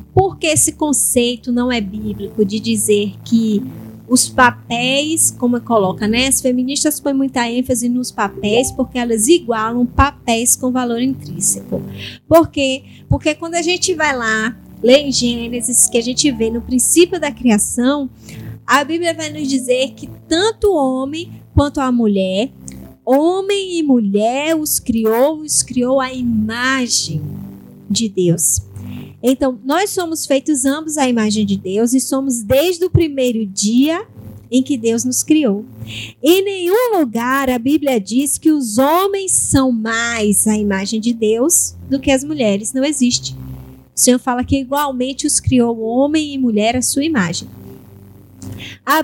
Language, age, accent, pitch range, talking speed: Portuguese, 20-39, Brazilian, 225-290 Hz, 155 wpm